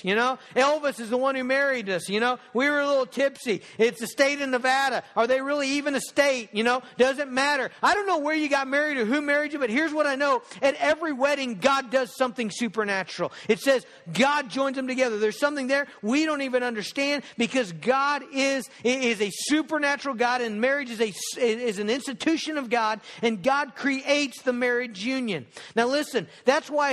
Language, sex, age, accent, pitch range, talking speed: English, male, 50-69, American, 200-275 Hz, 205 wpm